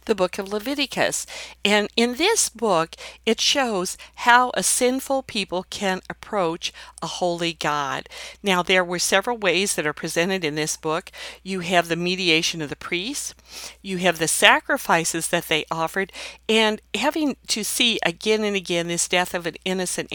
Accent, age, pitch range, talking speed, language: American, 50-69, 165-210 Hz, 165 wpm, English